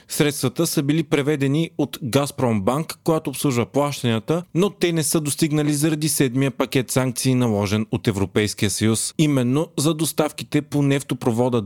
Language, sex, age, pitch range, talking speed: Bulgarian, male, 30-49, 115-150 Hz, 140 wpm